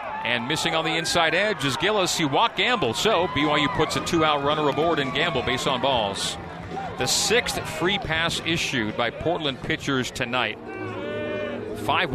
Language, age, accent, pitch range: English, 40-59, American, 125-145 Hz